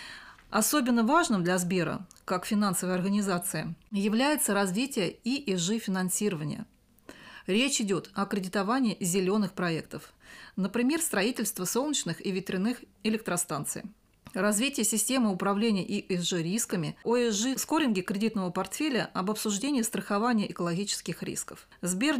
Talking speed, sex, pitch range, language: 95 wpm, female, 185-230 Hz, Russian